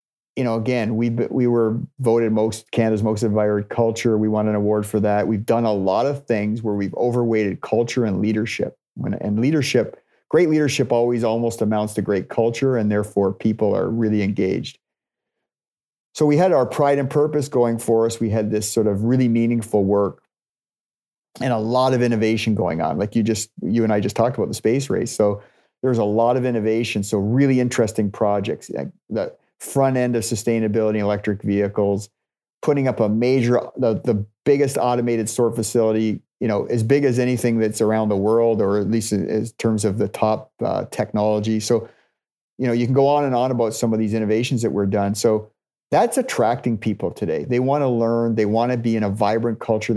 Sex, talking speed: male, 200 wpm